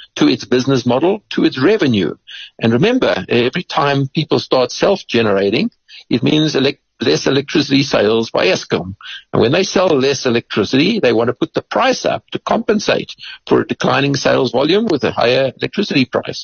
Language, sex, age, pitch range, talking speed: English, male, 60-79, 115-155 Hz, 170 wpm